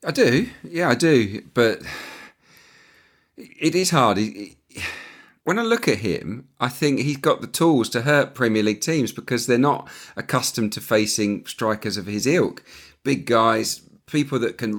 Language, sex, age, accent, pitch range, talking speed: English, male, 40-59, British, 100-125 Hz, 160 wpm